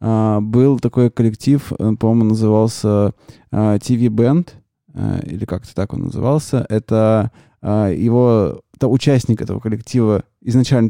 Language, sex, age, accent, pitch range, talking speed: Russian, male, 20-39, native, 110-125 Hz, 100 wpm